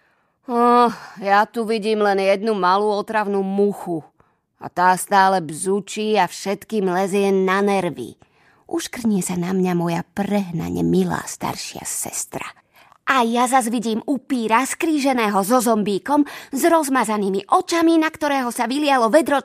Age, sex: 20-39, female